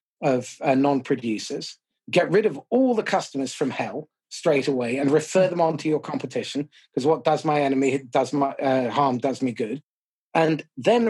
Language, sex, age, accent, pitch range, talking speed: English, male, 40-59, British, 140-195 Hz, 185 wpm